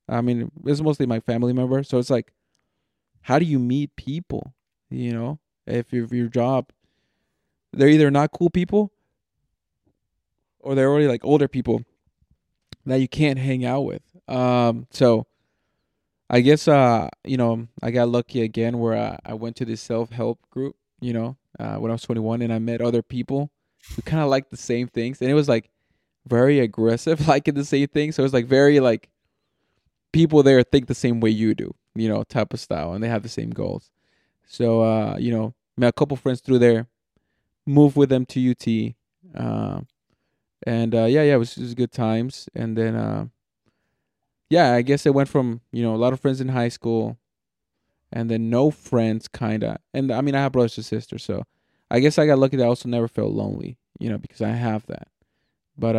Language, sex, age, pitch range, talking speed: English, male, 20-39, 115-140 Hz, 200 wpm